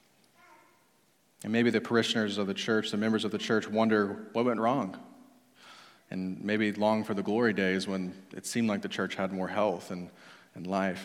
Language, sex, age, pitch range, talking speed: English, male, 30-49, 105-120 Hz, 190 wpm